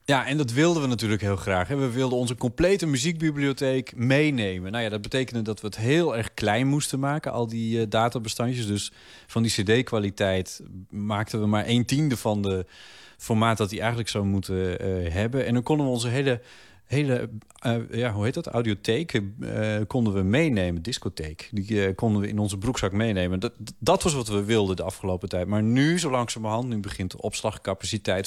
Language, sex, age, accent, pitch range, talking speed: Dutch, male, 30-49, Dutch, 105-130 Hz, 195 wpm